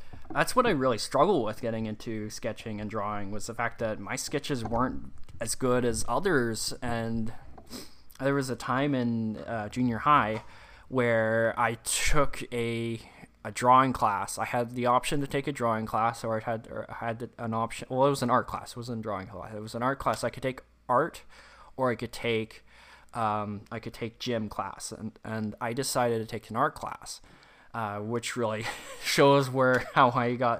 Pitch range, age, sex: 110-130 Hz, 20-39, male